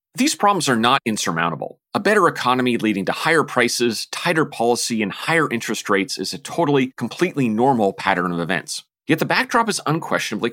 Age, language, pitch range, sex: 30-49, English, 100-145 Hz, male